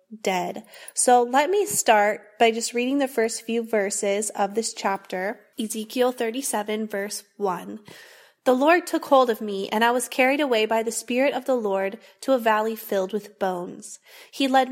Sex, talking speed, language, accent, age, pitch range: female, 180 wpm, English, American, 20-39, 205-255 Hz